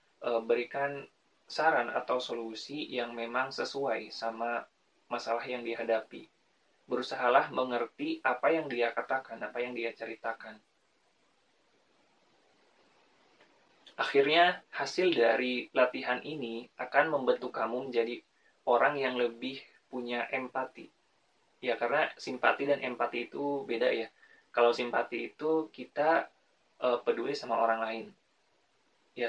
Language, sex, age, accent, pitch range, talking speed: Indonesian, male, 20-39, native, 115-135 Hz, 105 wpm